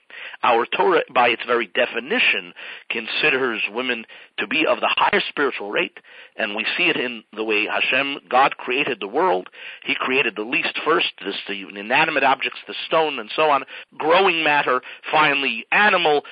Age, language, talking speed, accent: 50-69, English, 165 wpm, American